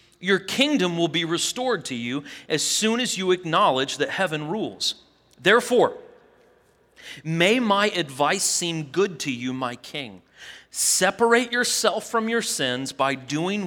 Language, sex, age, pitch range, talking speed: English, male, 30-49, 155-220 Hz, 140 wpm